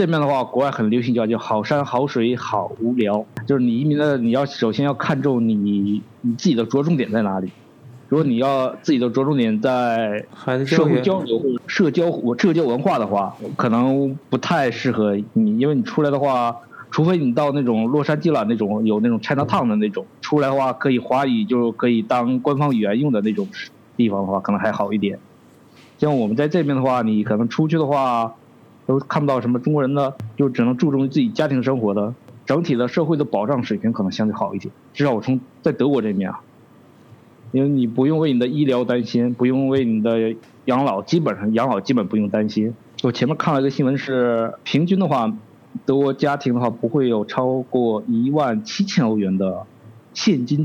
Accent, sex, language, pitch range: native, male, Chinese, 115-145 Hz